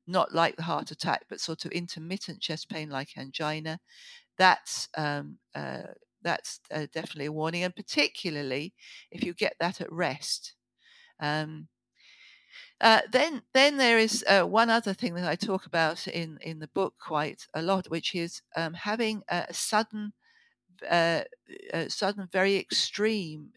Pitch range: 150-195 Hz